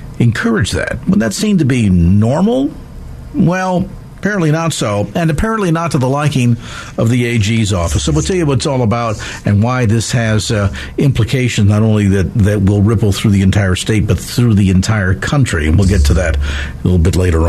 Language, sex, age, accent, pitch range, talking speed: English, male, 50-69, American, 100-135 Hz, 200 wpm